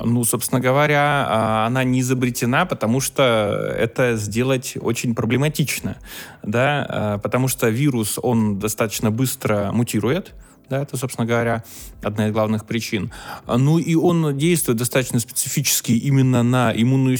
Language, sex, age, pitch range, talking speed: Russian, male, 20-39, 110-135 Hz, 130 wpm